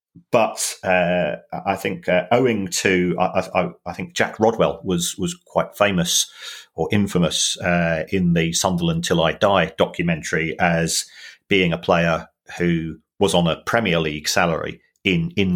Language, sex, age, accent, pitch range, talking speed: English, male, 40-59, British, 90-115 Hz, 155 wpm